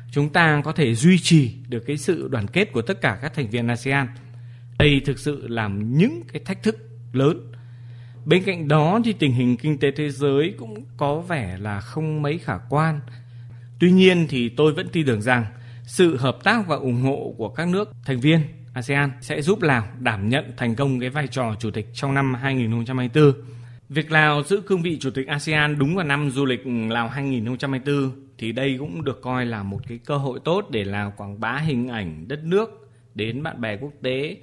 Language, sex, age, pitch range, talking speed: Vietnamese, male, 20-39, 120-150 Hz, 205 wpm